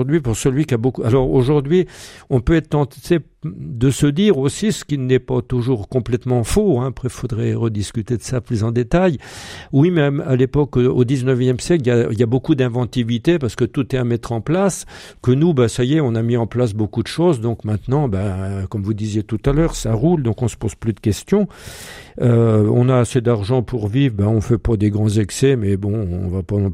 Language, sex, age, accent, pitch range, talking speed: French, male, 50-69, French, 110-140 Hz, 240 wpm